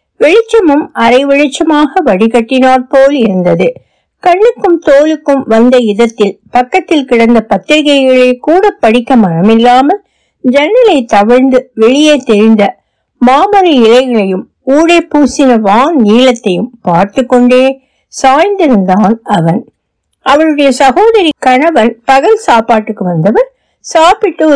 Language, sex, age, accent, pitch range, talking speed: Tamil, female, 60-79, native, 225-310 Hz, 90 wpm